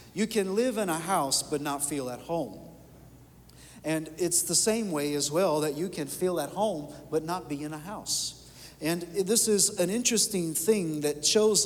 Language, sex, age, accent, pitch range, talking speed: English, male, 50-69, American, 140-175 Hz, 195 wpm